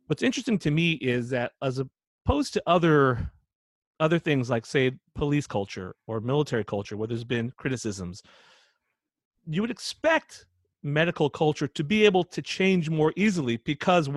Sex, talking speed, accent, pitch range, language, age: male, 155 wpm, American, 115-165 Hz, English, 40-59